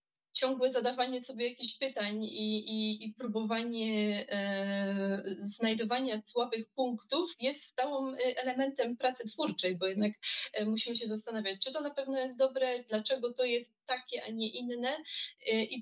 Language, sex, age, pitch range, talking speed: Polish, female, 20-39, 215-245 Hz, 135 wpm